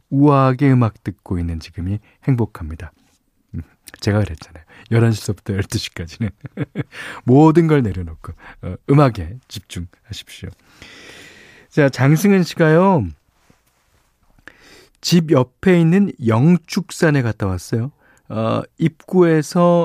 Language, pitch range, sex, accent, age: Korean, 100-165 Hz, male, native, 40-59